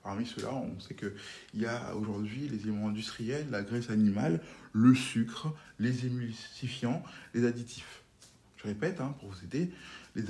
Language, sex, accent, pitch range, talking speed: French, male, French, 105-130 Hz, 155 wpm